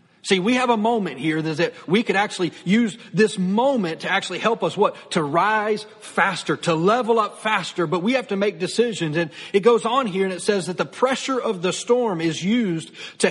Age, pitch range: 40-59, 165-210 Hz